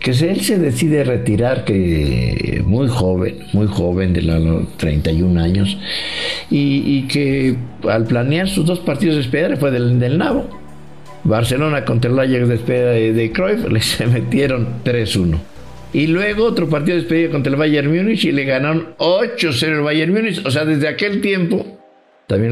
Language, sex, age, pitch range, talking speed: English, male, 60-79, 115-160 Hz, 170 wpm